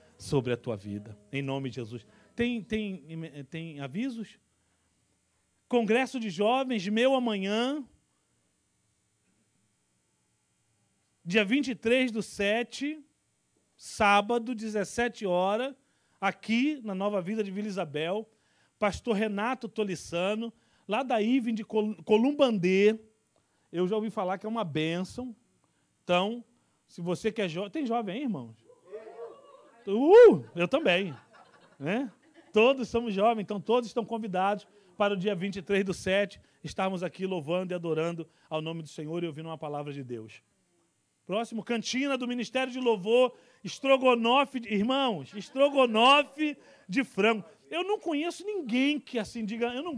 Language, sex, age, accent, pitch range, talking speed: Portuguese, male, 40-59, Brazilian, 180-245 Hz, 130 wpm